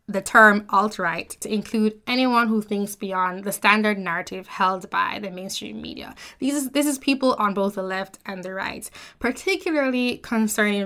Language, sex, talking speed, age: English, female, 170 wpm, 10-29